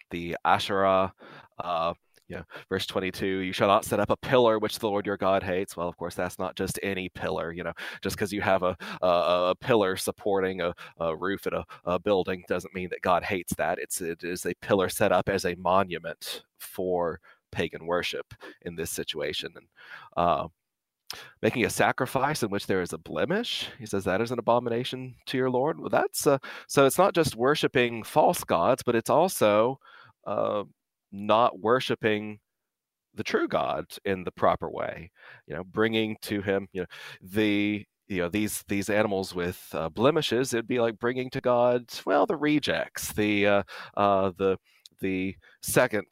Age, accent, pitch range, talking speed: 30-49, American, 90-115 Hz, 185 wpm